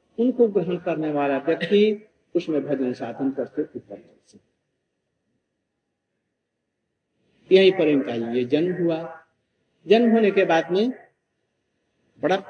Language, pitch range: Hindi, 150-205 Hz